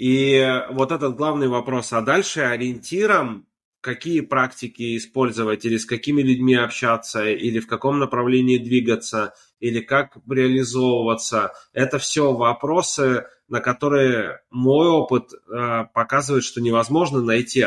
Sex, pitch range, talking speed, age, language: male, 120-135 Hz, 120 wpm, 20-39, Russian